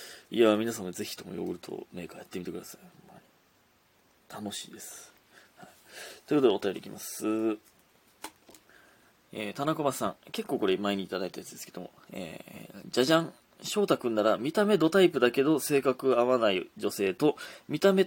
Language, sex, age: Japanese, male, 20-39